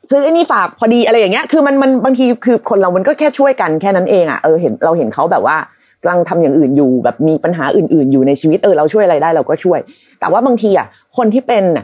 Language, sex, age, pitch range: Thai, female, 30-49, 175-245 Hz